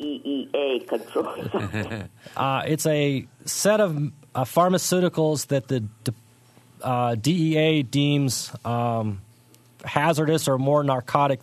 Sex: male